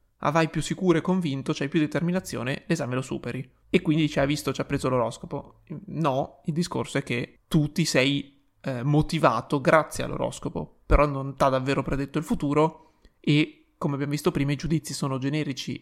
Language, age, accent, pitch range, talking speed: Italian, 20-39, native, 135-160 Hz, 195 wpm